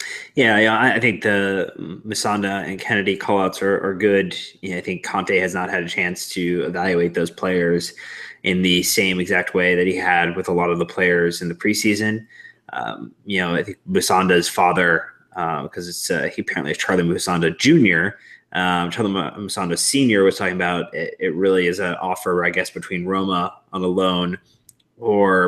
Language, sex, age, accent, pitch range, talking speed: English, male, 20-39, American, 90-100 Hz, 190 wpm